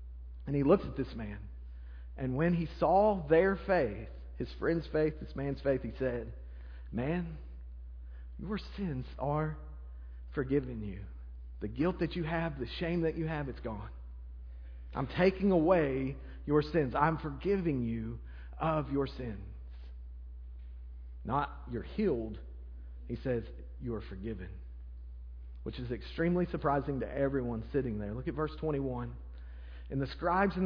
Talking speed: 140 wpm